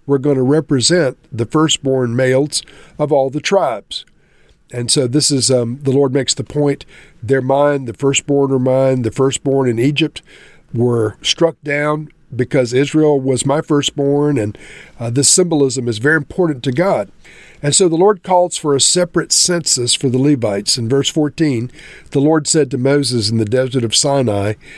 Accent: American